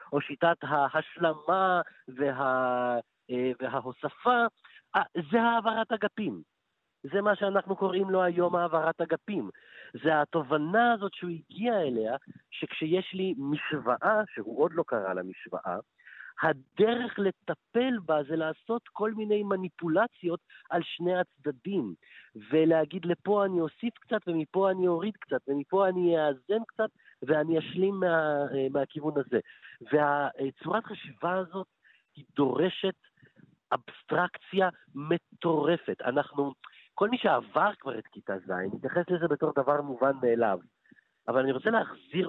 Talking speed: 120 wpm